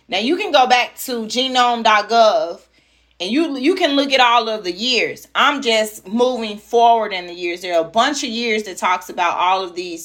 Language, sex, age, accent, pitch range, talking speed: English, female, 30-49, American, 195-255 Hz, 215 wpm